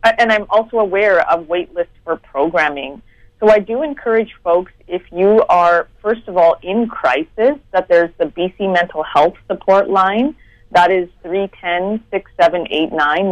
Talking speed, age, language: 150 wpm, 30-49, English